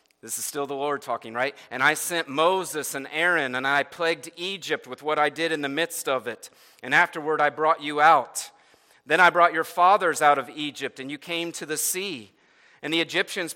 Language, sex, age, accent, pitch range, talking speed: English, male, 40-59, American, 145-180 Hz, 215 wpm